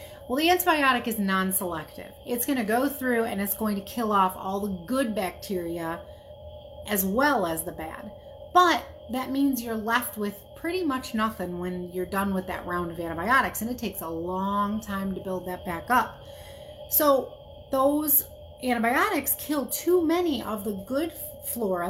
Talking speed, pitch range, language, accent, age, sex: 170 wpm, 195-255 Hz, English, American, 30-49, female